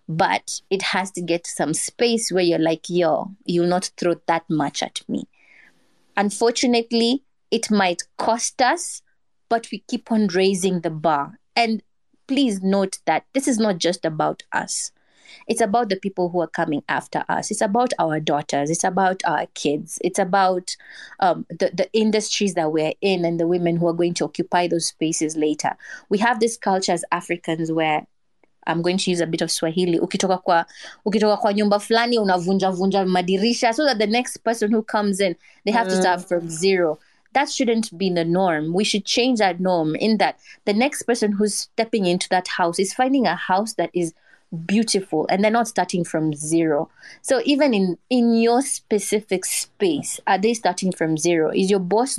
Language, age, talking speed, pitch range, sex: English, 20-39, 180 wpm, 170-220 Hz, female